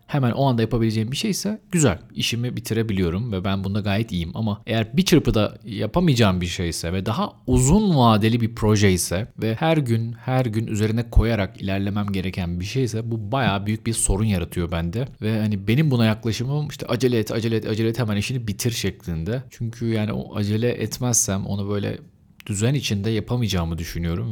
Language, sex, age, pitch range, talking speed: Turkish, male, 40-59, 95-125 Hz, 180 wpm